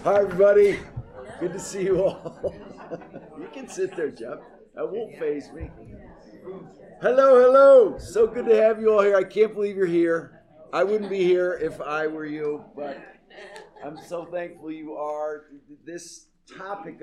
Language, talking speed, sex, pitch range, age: English, 160 wpm, male, 110-185 Hz, 50-69